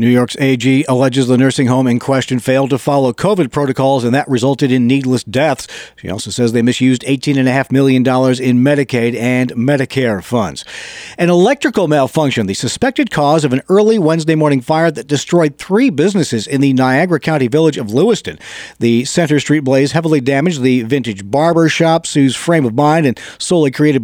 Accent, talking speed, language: American, 180 wpm, English